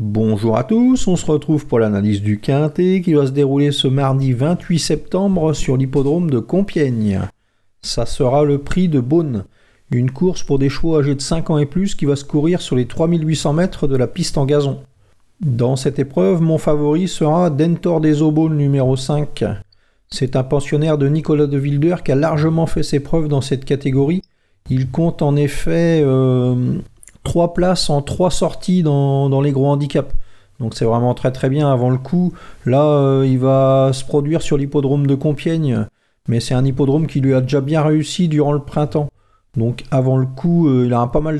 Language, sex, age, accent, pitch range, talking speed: French, male, 40-59, French, 130-155 Hz, 195 wpm